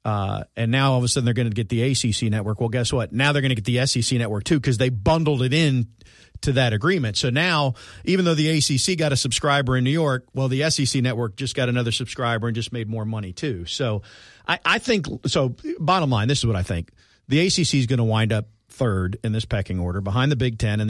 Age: 40-59